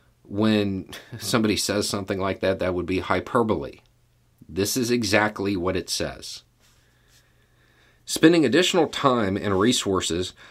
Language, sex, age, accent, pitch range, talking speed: English, male, 50-69, American, 90-120 Hz, 120 wpm